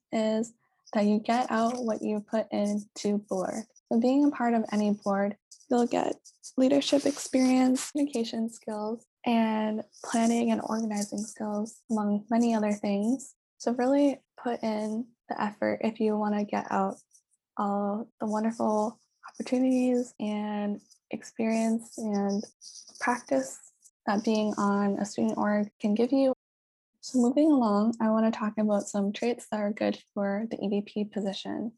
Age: 10-29